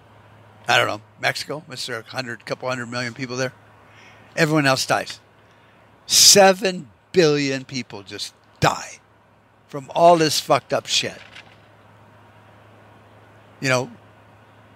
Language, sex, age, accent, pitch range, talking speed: English, male, 60-79, American, 110-160 Hz, 115 wpm